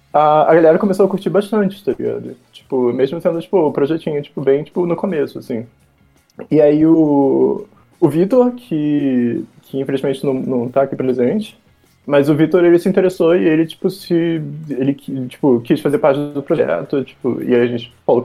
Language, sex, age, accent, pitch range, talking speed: Portuguese, male, 20-39, Brazilian, 135-190 Hz, 185 wpm